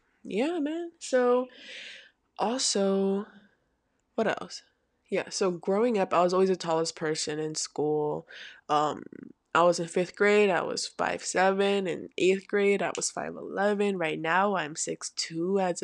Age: 20-39